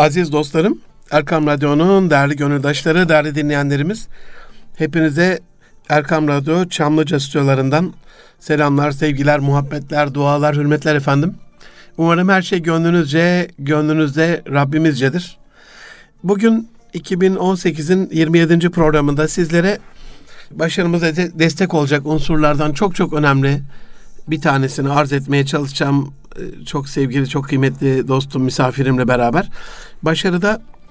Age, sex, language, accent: 60-79, male, Turkish, native